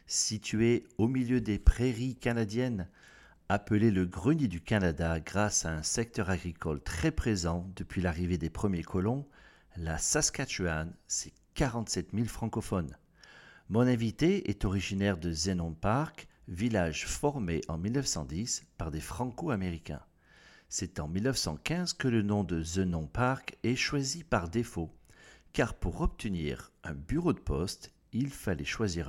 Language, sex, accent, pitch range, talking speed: French, male, French, 85-120 Hz, 135 wpm